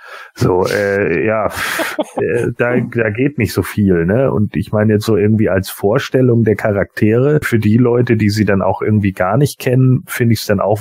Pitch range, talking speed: 110-150 Hz, 205 wpm